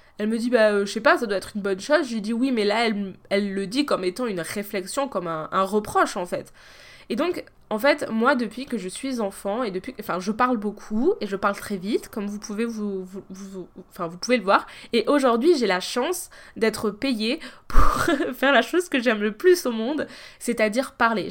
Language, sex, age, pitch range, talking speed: French, female, 20-39, 195-255 Hz, 235 wpm